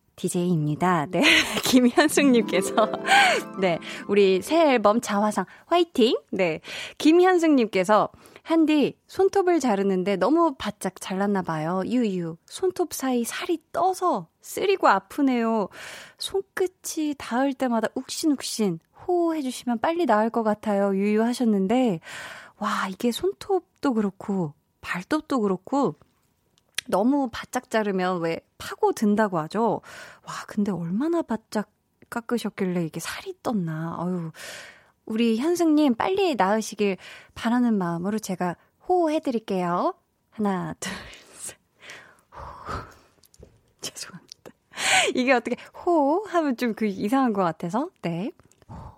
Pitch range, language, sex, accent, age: 195-310 Hz, Korean, female, native, 20-39